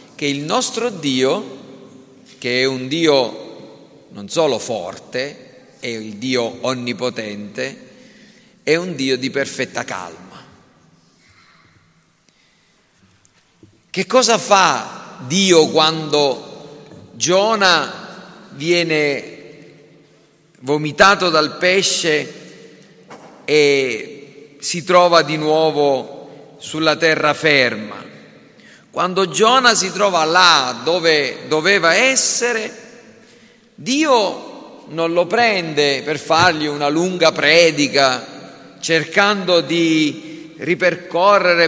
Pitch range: 155-190 Hz